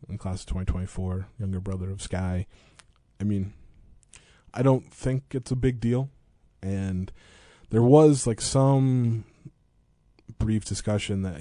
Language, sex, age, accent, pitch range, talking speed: English, male, 20-39, American, 90-110 Hz, 130 wpm